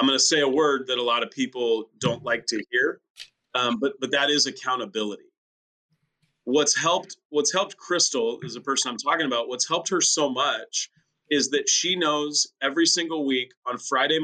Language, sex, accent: English, male, American